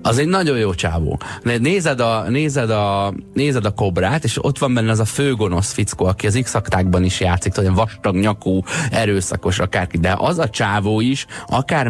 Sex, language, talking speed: male, Hungarian, 185 wpm